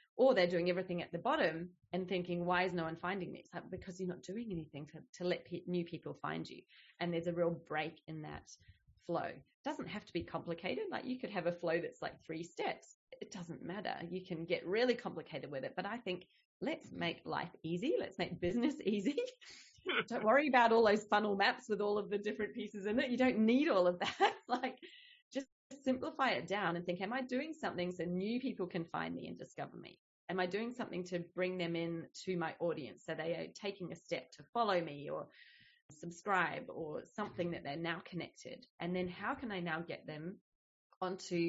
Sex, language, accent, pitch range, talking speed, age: female, English, Australian, 170-225 Hz, 220 wpm, 30-49